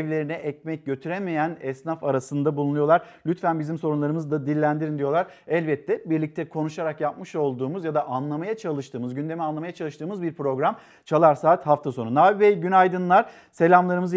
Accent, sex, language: native, male, Turkish